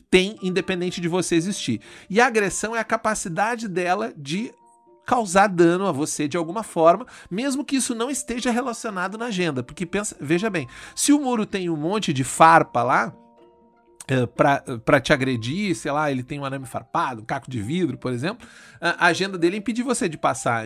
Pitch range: 150-200 Hz